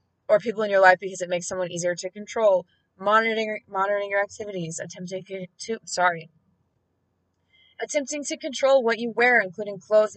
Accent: American